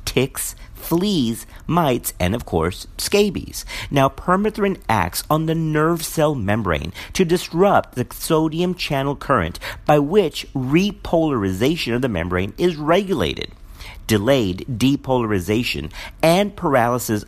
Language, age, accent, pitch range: English, 50-69, American, 95-155 Hz